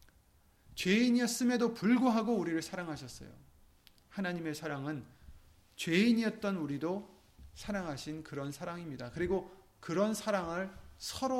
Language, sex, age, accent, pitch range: Korean, male, 30-49, native, 150-205 Hz